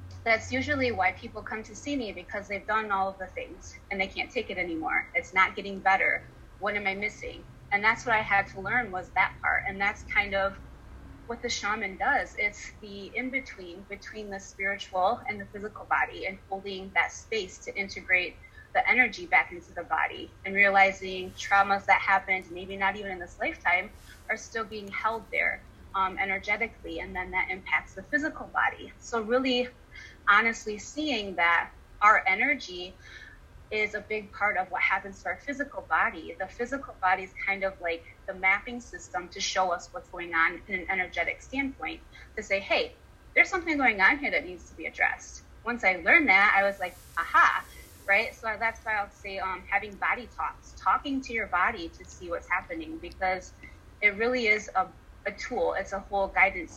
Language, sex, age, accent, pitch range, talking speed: English, female, 20-39, American, 190-230 Hz, 195 wpm